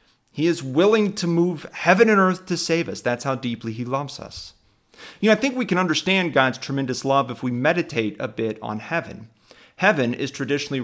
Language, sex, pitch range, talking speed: English, male, 120-160 Hz, 205 wpm